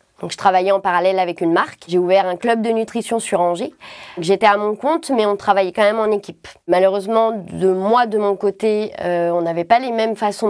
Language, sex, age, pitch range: French, female, 20-39, 185-225 Hz